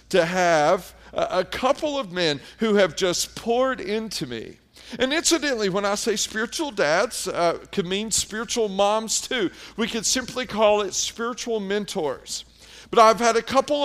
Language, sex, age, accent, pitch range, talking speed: English, male, 40-59, American, 175-235 Hz, 165 wpm